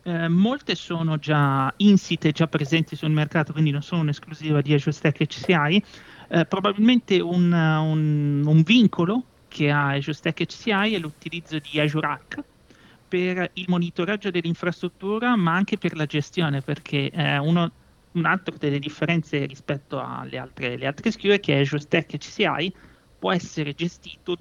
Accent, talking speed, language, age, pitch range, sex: native, 145 wpm, Italian, 30-49, 150-190 Hz, male